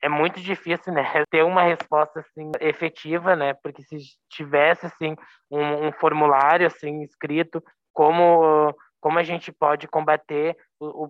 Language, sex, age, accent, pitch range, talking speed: Portuguese, male, 20-39, Brazilian, 150-170 Hz, 145 wpm